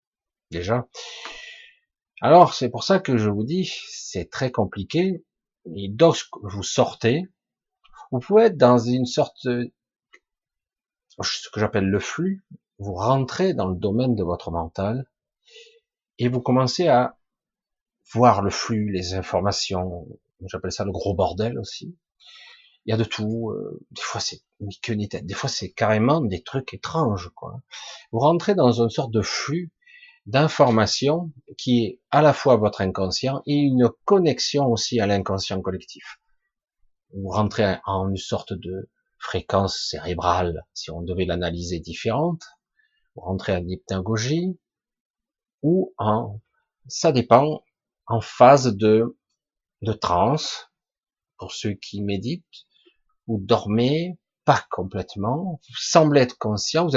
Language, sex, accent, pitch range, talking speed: French, male, French, 100-155 Hz, 140 wpm